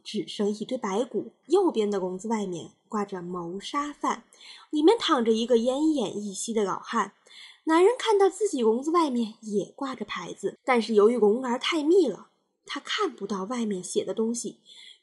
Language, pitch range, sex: Chinese, 205-305 Hz, female